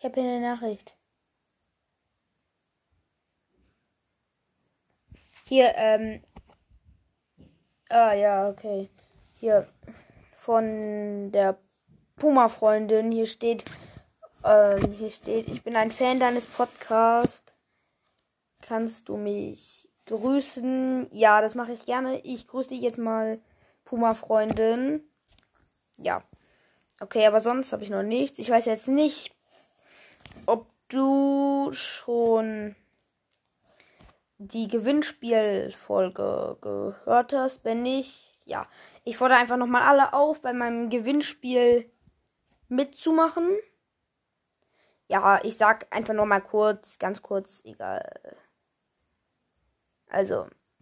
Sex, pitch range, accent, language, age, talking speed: female, 215-260 Hz, German, German, 20-39, 95 wpm